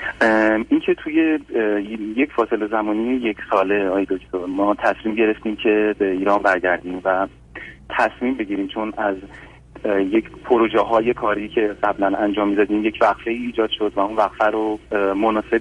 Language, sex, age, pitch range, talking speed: Persian, male, 30-49, 100-110 Hz, 150 wpm